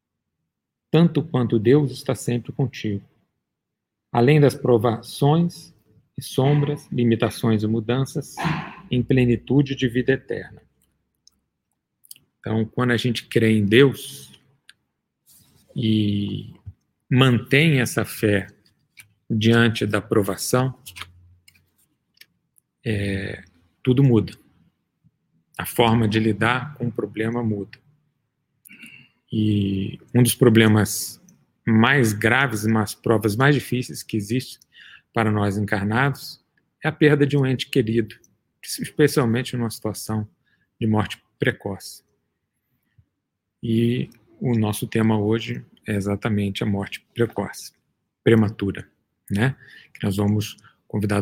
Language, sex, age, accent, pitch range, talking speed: Portuguese, male, 40-59, Brazilian, 105-130 Hz, 100 wpm